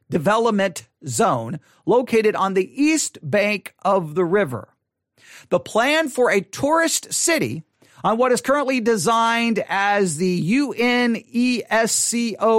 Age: 40-59